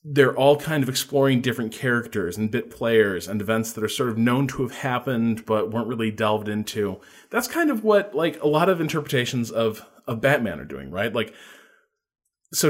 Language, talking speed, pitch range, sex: English, 200 wpm, 105-145 Hz, male